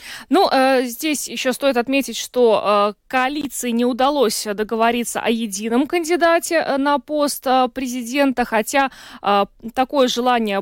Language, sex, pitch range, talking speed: Russian, female, 225-275 Hz, 105 wpm